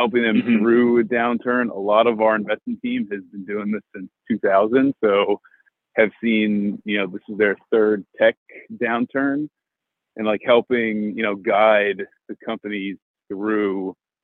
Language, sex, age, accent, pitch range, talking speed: English, male, 30-49, American, 100-115 Hz, 155 wpm